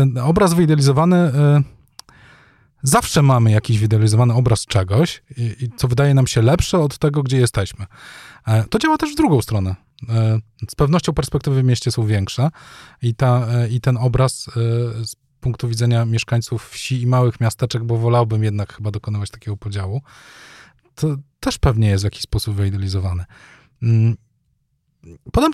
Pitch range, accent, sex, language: 105-135 Hz, native, male, Polish